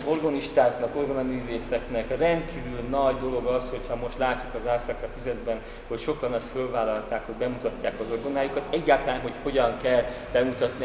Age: 30-49